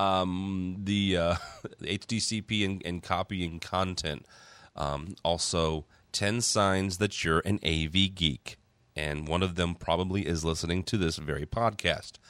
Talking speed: 140 wpm